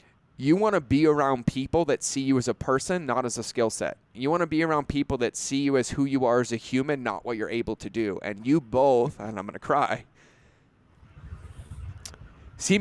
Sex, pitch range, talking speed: male, 120-145 Hz, 225 wpm